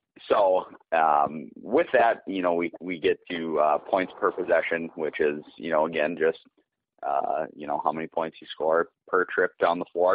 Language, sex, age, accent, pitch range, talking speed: English, male, 30-49, American, 75-105 Hz, 195 wpm